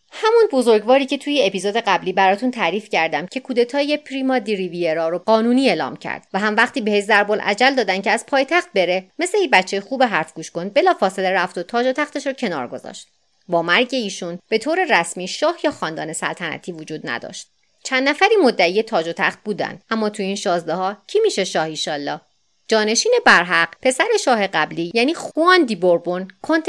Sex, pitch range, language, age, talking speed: female, 175-285 Hz, Persian, 30-49, 185 wpm